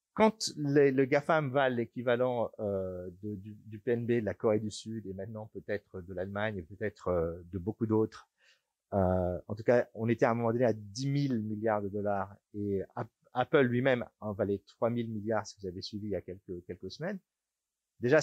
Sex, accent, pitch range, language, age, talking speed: male, French, 105-145 Hz, French, 40-59, 205 wpm